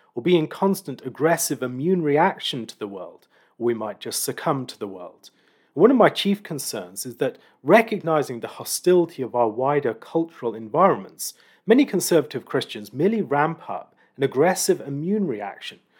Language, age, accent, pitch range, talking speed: English, 40-59, British, 130-190 Hz, 160 wpm